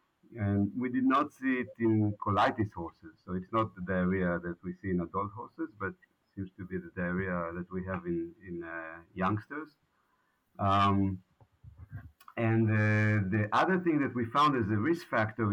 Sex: male